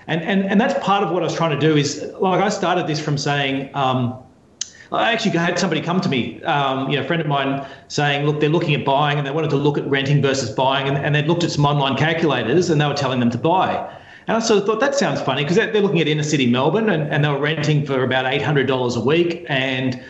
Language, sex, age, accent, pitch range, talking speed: English, male, 30-49, Australian, 135-170 Hz, 270 wpm